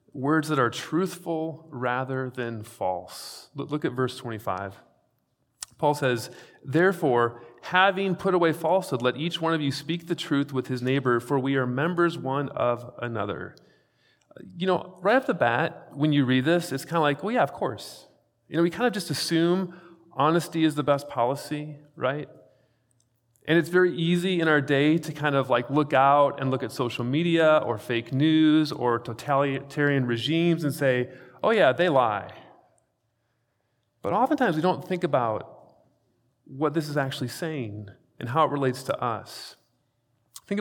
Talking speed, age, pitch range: 170 wpm, 40-59, 120-165 Hz